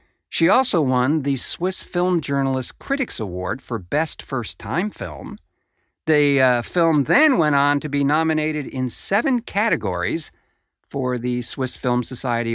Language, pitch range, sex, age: English, 95-130 Hz, male, 50-69